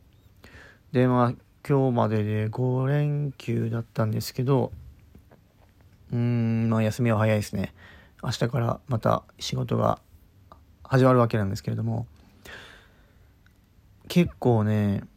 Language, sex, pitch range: Japanese, male, 100-125 Hz